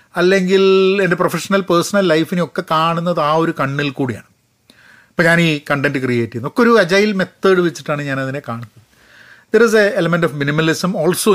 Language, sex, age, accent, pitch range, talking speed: Malayalam, male, 40-59, native, 125-195 Hz, 170 wpm